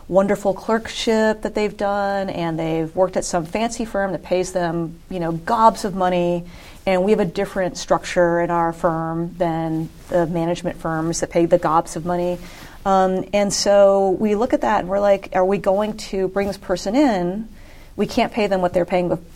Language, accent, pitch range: English, American, 170-190 Hz